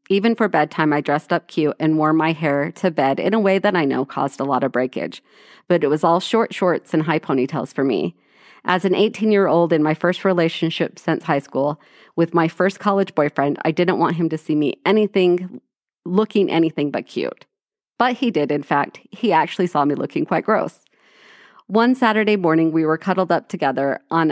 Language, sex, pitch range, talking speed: English, female, 155-195 Hz, 205 wpm